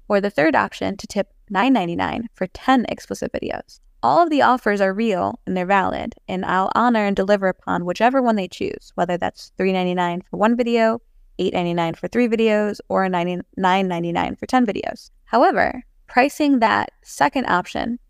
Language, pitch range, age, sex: English, 185-235 Hz, 20-39, female